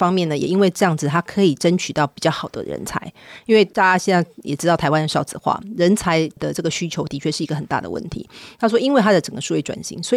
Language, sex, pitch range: Chinese, female, 155-200 Hz